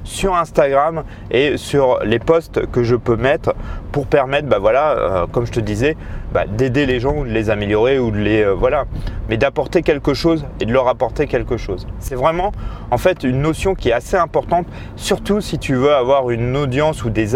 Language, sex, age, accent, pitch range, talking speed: French, male, 30-49, French, 115-165 Hz, 210 wpm